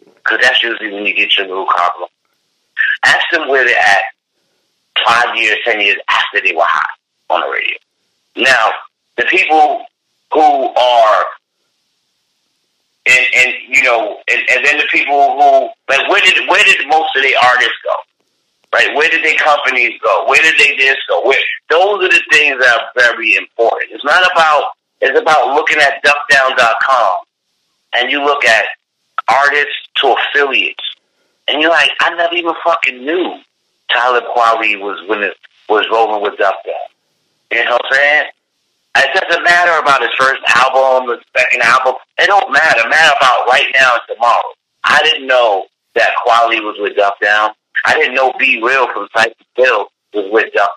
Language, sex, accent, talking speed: English, male, American, 170 wpm